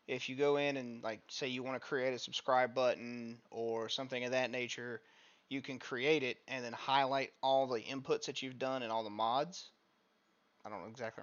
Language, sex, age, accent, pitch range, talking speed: English, male, 30-49, American, 115-130 Hz, 210 wpm